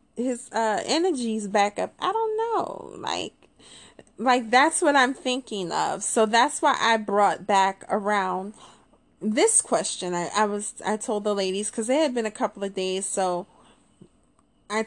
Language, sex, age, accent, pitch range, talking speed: English, female, 20-39, American, 200-250 Hz, 165 wpm